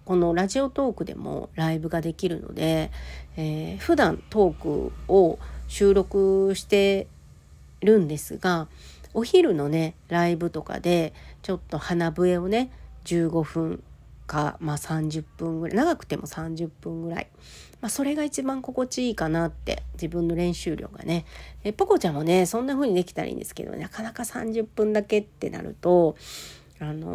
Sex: female